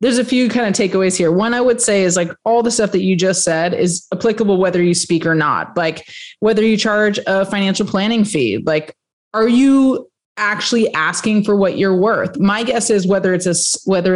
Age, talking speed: 30-49, 215 wpm